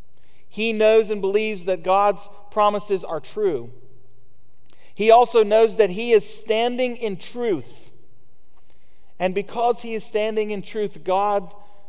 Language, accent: English, American